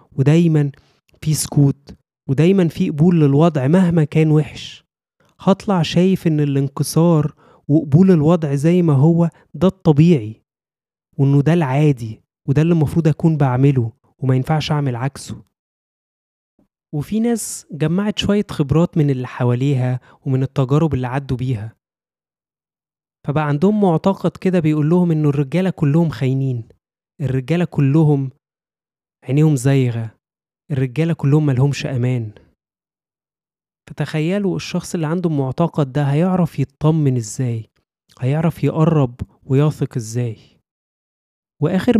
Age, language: 20-39, Arabic